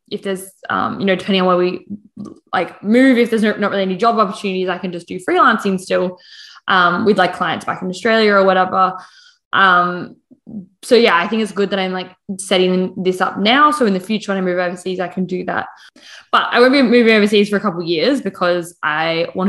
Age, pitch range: 20-39, 180-215 Hz